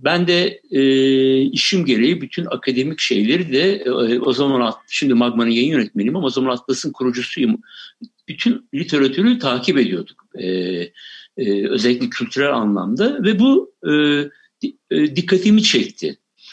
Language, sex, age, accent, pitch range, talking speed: Turkish, male, 60-79, native, 130-215 Hz, 125 wpm